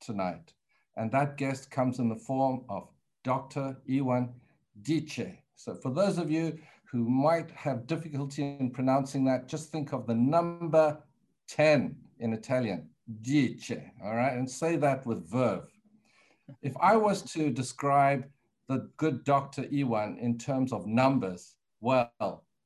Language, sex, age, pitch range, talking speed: English, male, 50-69, 120-150 Hz, 145 wpm